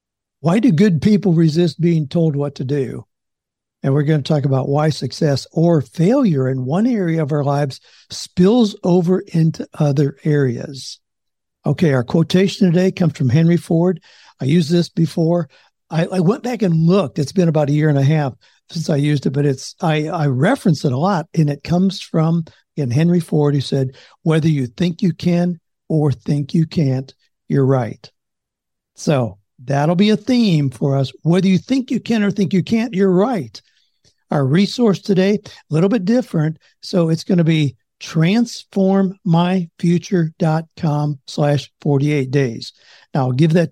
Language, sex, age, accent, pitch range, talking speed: English, male, 60-79, American, 145-180 Hz, 175 wpm